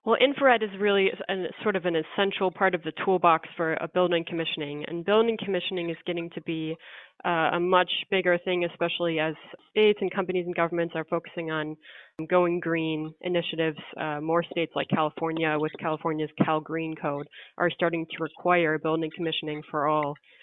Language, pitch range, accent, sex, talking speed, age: English, 155-180 Hz, American, female, 175 wpm, 20-39